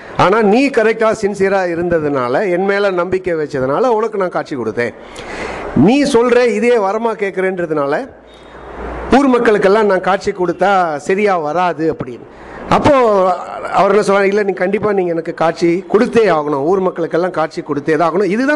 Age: 50-69